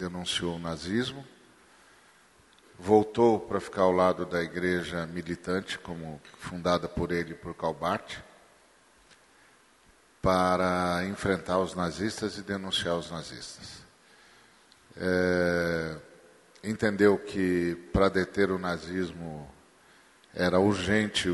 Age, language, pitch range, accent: 40-59, Portuguese, 90-100 Hz, Brazilian